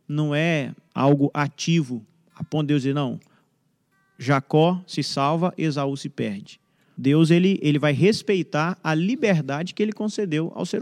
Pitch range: 145-180 Hz